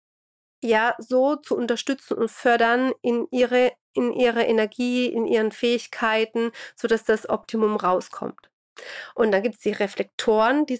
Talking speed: 140 wpm